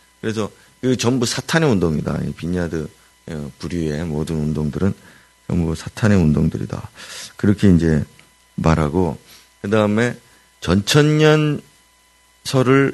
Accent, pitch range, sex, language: native, 85-110 Hz, male, Korean